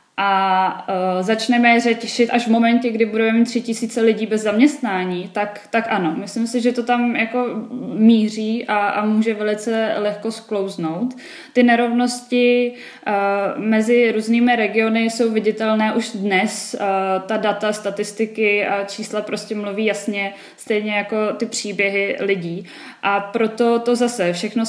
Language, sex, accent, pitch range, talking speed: Czech, female, native, 200-235 Hz, 145 wpm